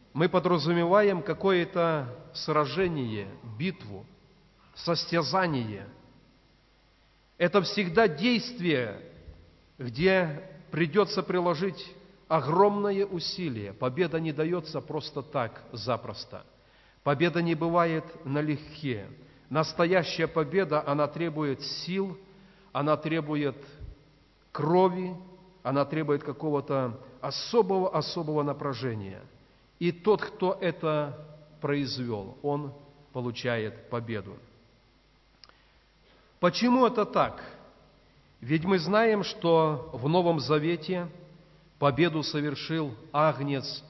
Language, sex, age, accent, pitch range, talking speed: Russian, male, 40-59, native, 140-180 Hz, 80 wpm